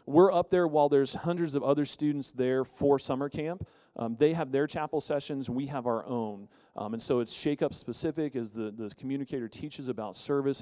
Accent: American